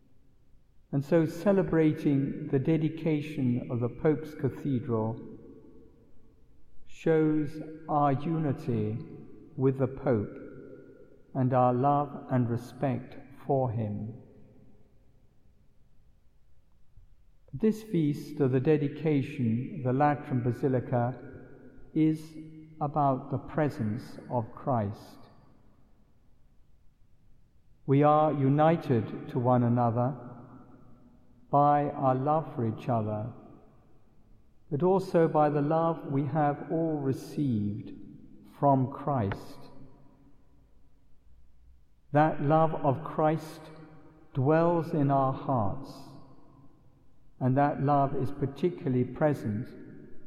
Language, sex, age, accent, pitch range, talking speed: English, male, 60-79, British, 120-150 Hz, 85 wpm